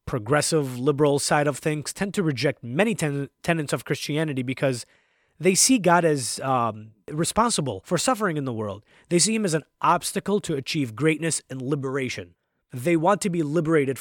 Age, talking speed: 30-49, 175 wpm